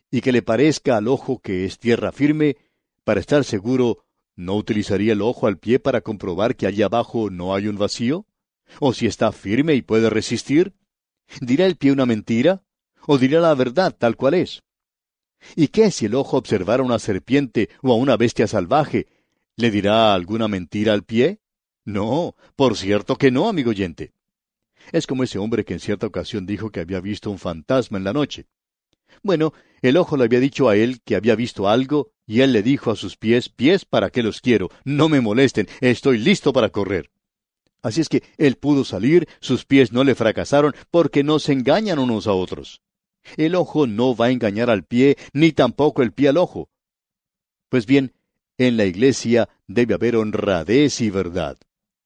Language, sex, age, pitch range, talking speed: English, male, 50-69, 105-140 Hz, 190 wpm